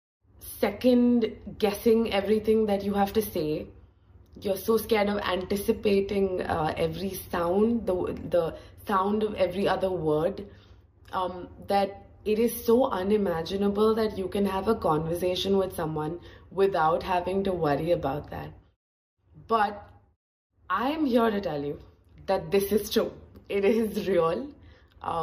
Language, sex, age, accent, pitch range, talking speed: English, female, 20-39, Indian, 145-220 Hz, 135 wpm